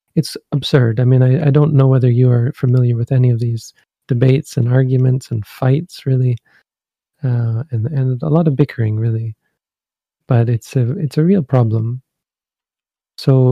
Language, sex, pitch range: English, male, 120-140 Hz